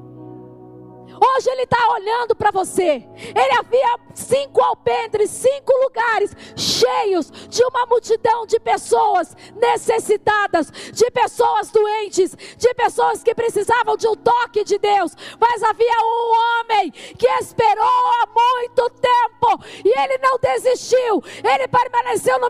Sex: female